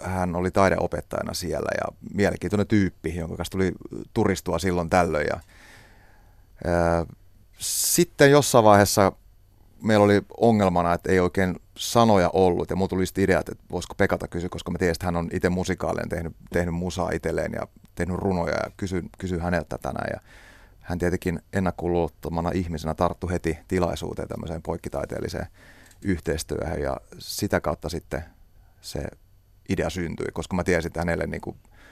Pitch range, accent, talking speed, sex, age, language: 85-100 Hz, native, 145 wpm, male, 30-49, Finnish